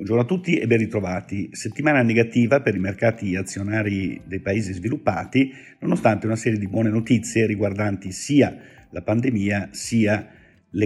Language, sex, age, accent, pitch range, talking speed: Italian, male, 50-69, native, 100-120 Hz, 150 wpm